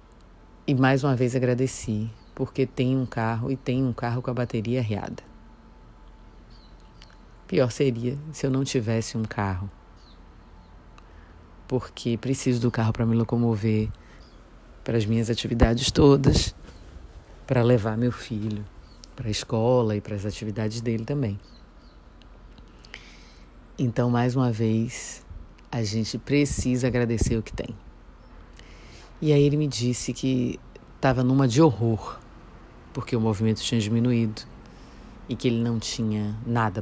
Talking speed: 135 wpm